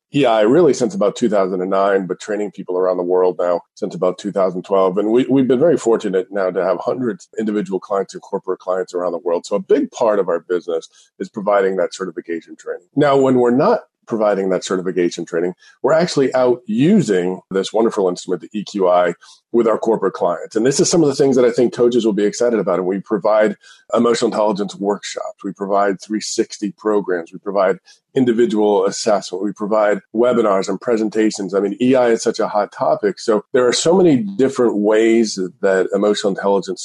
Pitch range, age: 95-130 Hz, 40-59